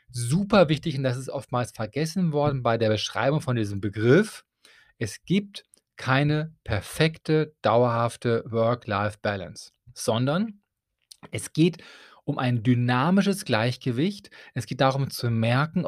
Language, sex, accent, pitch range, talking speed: German, male, German, 120-155 Hz, 120 wpm